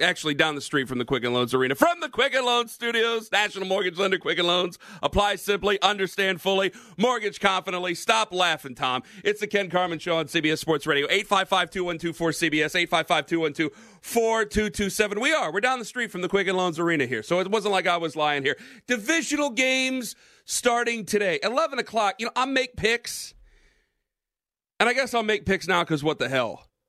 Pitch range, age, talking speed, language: 170-215 Hz, 40-59, 185 wpm, English